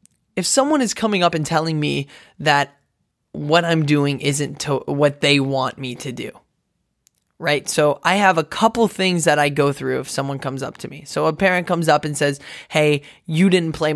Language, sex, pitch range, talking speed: English, male, 140-180 Hz, 200 wpm